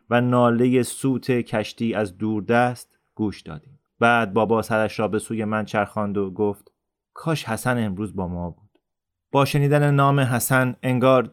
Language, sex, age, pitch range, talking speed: Persian, male, 30-49, 105-130 Hz, 160 wpm